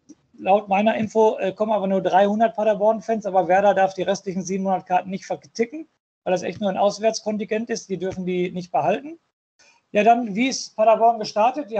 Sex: male